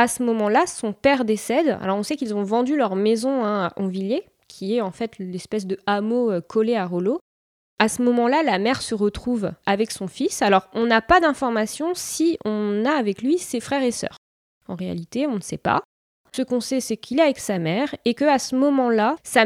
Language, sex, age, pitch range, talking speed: French, female, 20-39, 200-260 Hz, 215 wpm